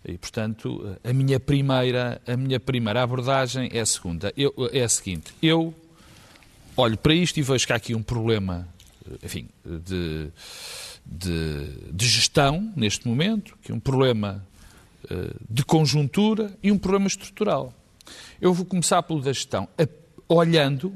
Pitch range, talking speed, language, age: 110-155 Hz, 150 wpm, Portuguese, 50-69